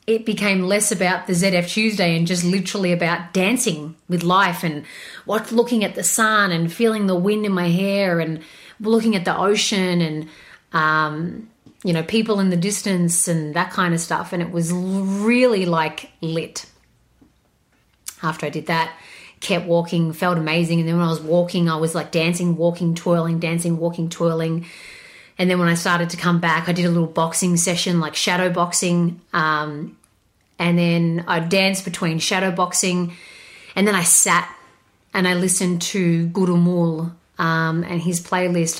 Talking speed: 175 wpm